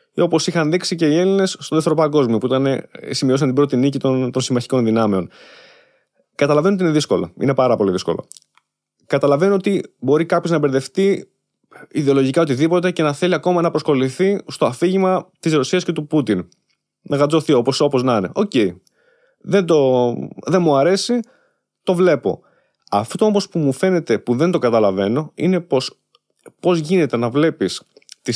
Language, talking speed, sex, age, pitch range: Greek, 165 wpm, male, 20-39, 135-190 Hz